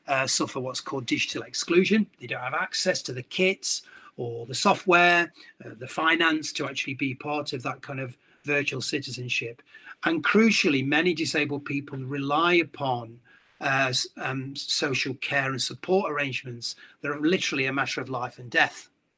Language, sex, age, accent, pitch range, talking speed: English, male, 40-59, British, 130-160 Hz, 165 wpm